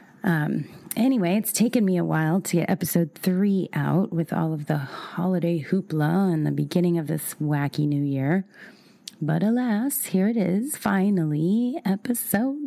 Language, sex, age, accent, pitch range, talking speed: English, female, 30-49, American, 155-200 Hz, 155 wpm